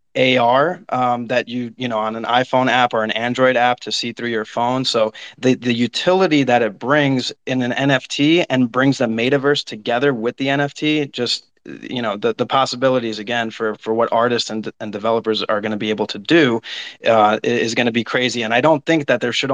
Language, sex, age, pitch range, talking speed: English, male, 30-49, 115-135 Hz, 220 wpm